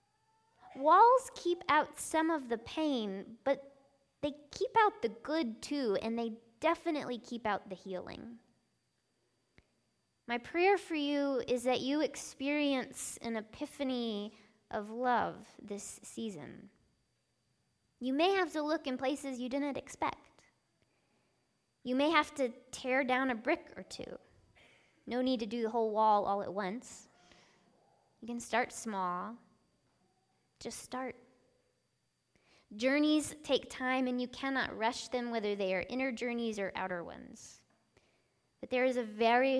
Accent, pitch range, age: American, 215-270 Hz, 20-39